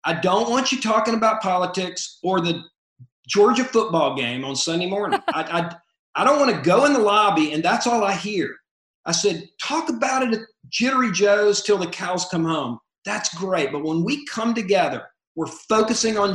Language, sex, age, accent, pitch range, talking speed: English, male, 50-69, American, 160-220 Hz, 195 wpm